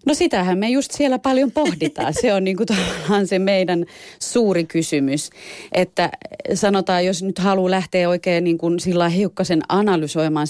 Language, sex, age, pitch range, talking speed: Finnish, female, 30-49, 140-170 Hz, 135 wpm